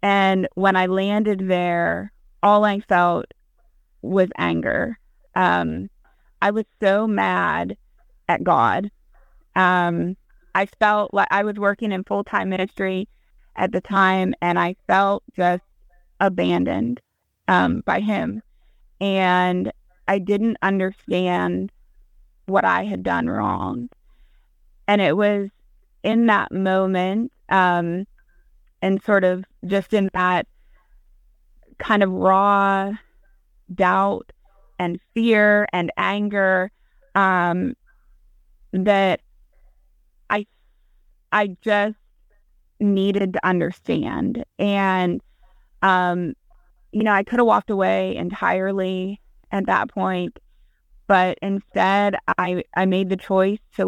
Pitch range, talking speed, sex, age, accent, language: 180-205 Hz, 110 wpm, female, 20-39, American, English